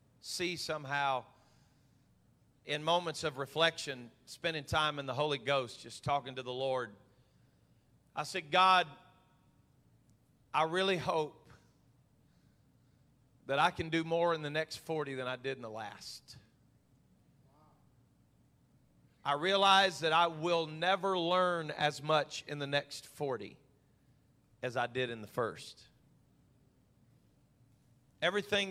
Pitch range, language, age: 125-155 Hz, English, 40-59